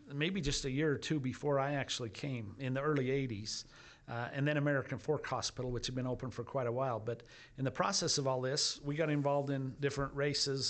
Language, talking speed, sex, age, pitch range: English, 230 wpm, male, 50-69, 130-150 Hz